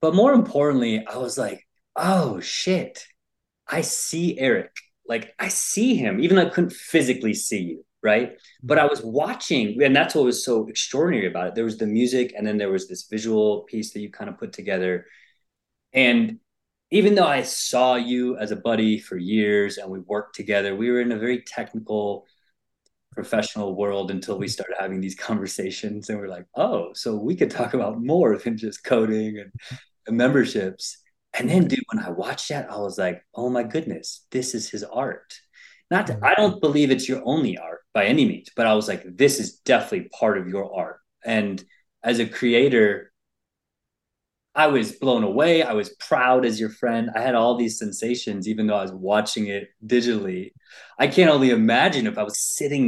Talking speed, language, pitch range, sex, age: 190 wpm, English, 105-130 Hz, male, 20-39